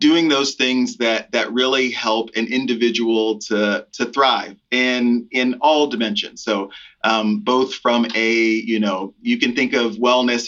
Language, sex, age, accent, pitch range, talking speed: English, male, 30-49, American, 110-130 Hz, 160 wpm